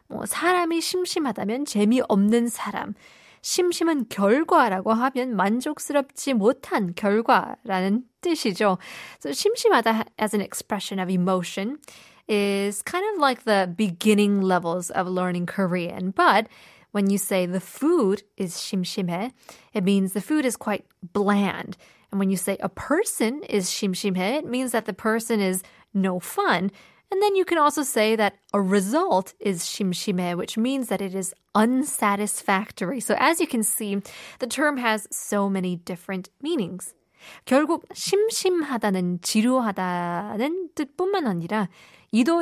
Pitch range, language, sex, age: 195-280 Hz, Korean, female, 20-39